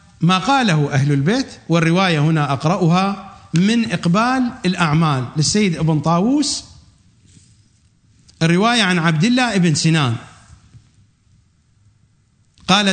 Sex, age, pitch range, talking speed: male, 50-69, 110-180 Hz, 95 wpm